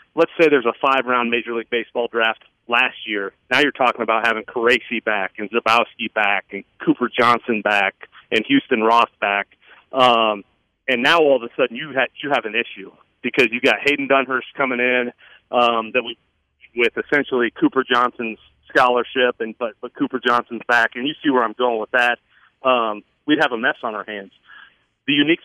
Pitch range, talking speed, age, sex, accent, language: 120-145 Hz, 195 wpm, 40-59, male, American, English